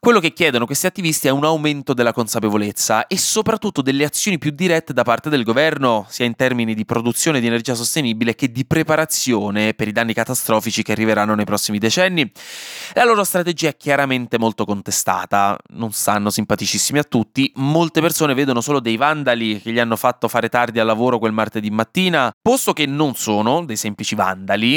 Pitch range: 110-150 Hz